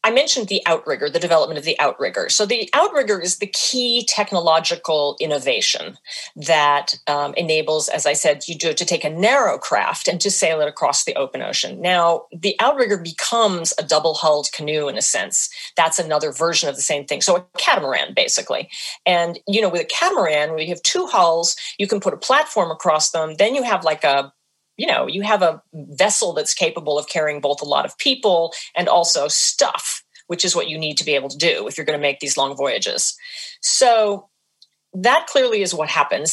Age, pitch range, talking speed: 40-59, 155-210 Hz, 205 wpm